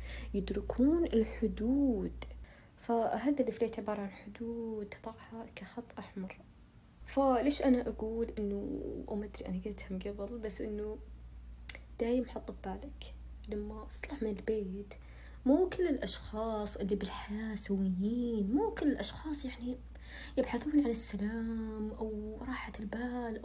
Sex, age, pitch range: female, 20-39, 200-260 Hz